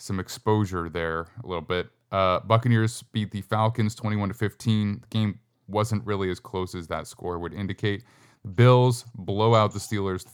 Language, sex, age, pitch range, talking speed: English, male, 20-39, 95-120 Hz, 175 wpm